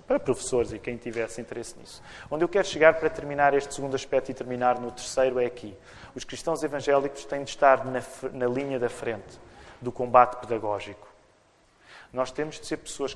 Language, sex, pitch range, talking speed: Portuguese, male, 125-165 Hz, 190 wpm